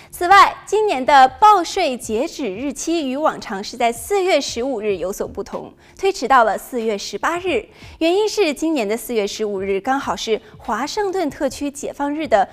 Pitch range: 220-345 Hz